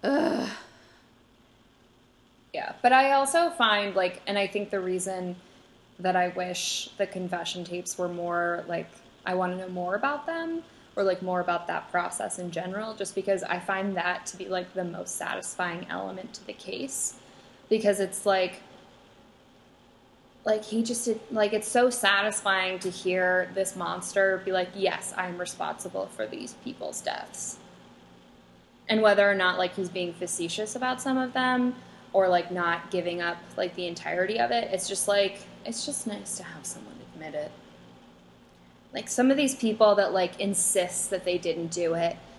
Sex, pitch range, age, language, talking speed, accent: female, 175-200 Hz, 10-29, English, 170 wpm, American